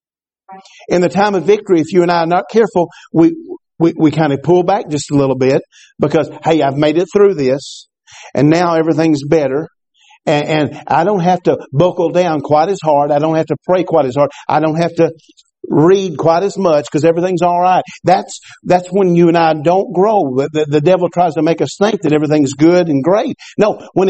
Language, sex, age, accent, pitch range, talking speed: English, male, 50-69, American, 150-180 Hz, 220 wpm